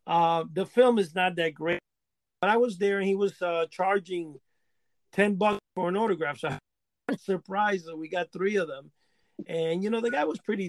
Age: 40-59